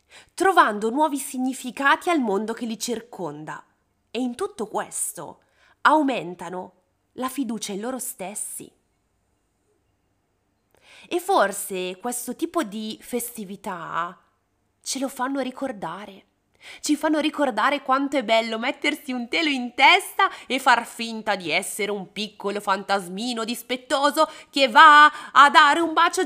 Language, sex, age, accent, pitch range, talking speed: Italian, female, 20-39, native, 205-295 Hz, 125 wpm